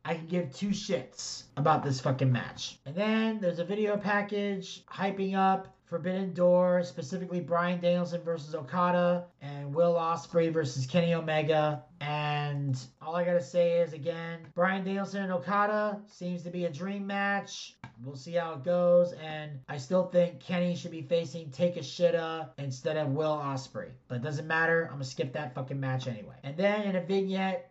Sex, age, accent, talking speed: male, 30-49, American, 185 wpm